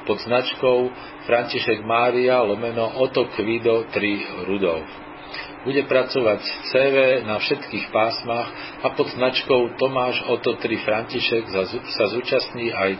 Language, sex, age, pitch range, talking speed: Slovak, male, 50-69, 105-125 Hz, 115 wpm